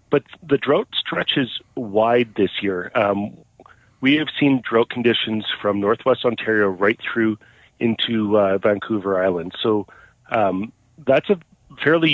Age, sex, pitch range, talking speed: 40-59, male, 110-130 Hz, 135 wpm